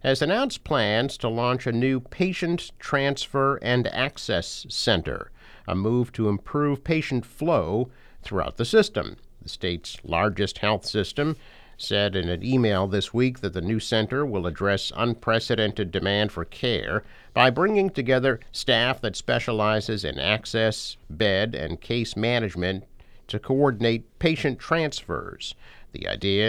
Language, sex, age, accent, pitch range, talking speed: English, male, 50-69, American, 100-125 Hz, 135 wpm